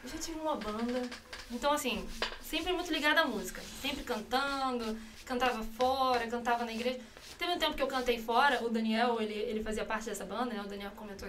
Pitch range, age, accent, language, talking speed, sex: 220-265 Hz, 20-39, Brazilian, Portuguese, 200 wpm, female